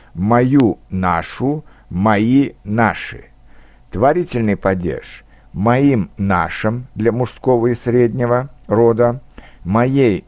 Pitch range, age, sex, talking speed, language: 105-135 Hz, 60-79, male, 80 wpm, Russian